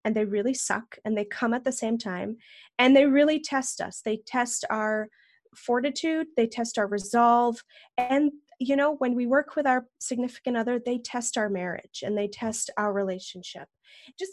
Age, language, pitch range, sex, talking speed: 30-49, English, 215-275 Hz, female, 185 wpm